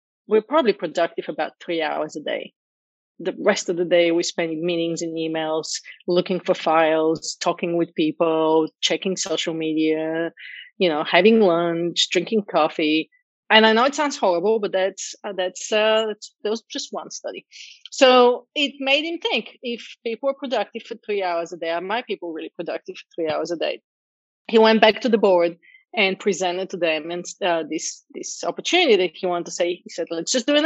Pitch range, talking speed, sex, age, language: 175-230 Hz, 195 wpm, female, 30-49, English